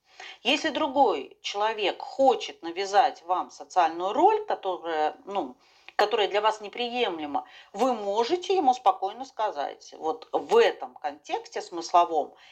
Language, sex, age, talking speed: Russian, female, 40-59, 110 wpm